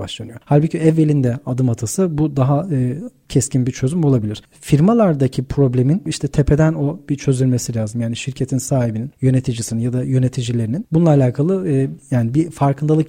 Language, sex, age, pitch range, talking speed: Turkish, male, 40-59, 130-155 Hz, 150 wpm